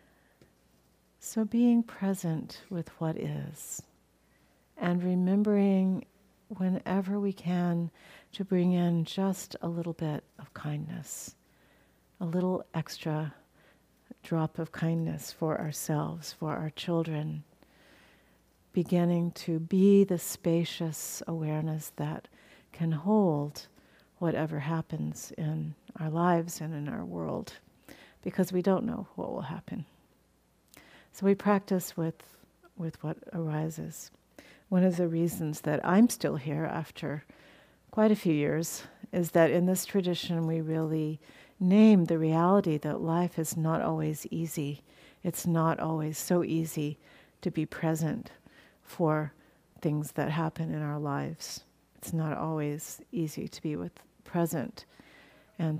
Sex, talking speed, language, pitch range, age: female, 125 wpm, English, 155-180 Hz, 50-69